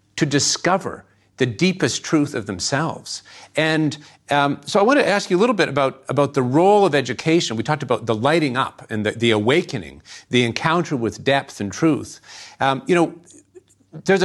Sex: male